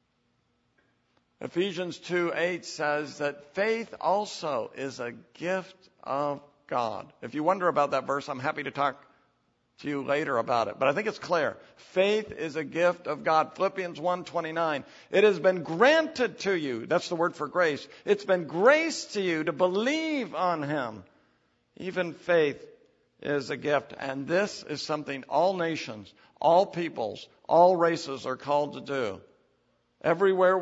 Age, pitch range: 60-79, 135-180 Hz